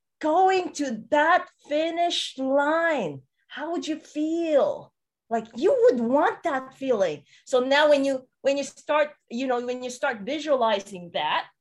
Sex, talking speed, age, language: female, 150 wpm, 30-49, English